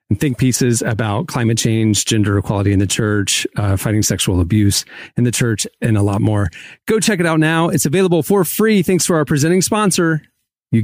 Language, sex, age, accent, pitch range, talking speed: English, male, 30-49, American, 110-145 Hz, 205 wpm